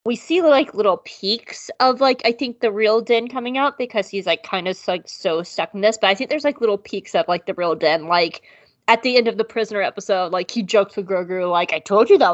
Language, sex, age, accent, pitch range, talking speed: English, female, 20-39, American, 185-230 Hz, 265 wpm